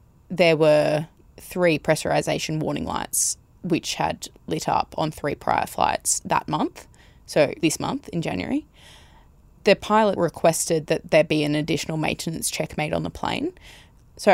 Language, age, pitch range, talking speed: English, 10-29, 150-180 Hz, 150 wpm